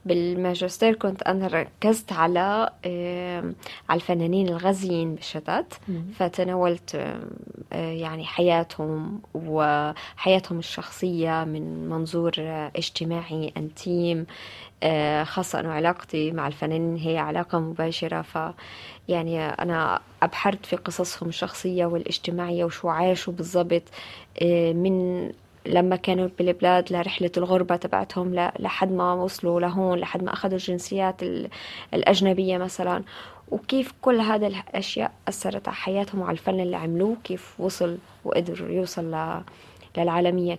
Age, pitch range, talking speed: 20-39, 165-185 Hz, 110 wpm